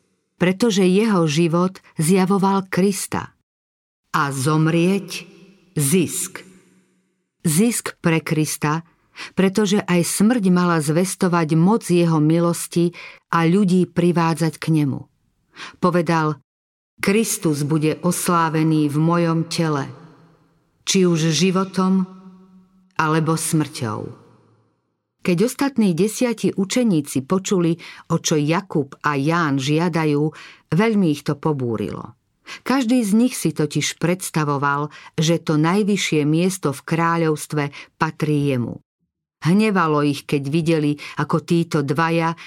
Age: 50-69